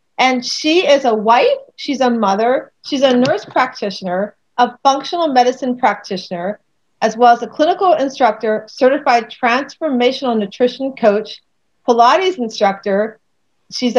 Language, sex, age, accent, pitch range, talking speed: English, female, 40-59, American, 220-280 Hz, 125 wpm